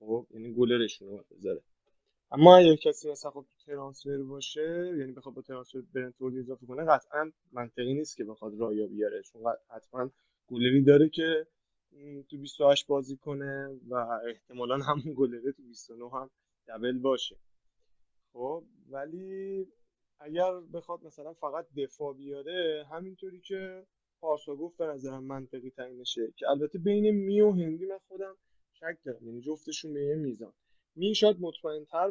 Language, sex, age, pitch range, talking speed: Persian, male, 20-39, 120-160 Hz, 145 wpm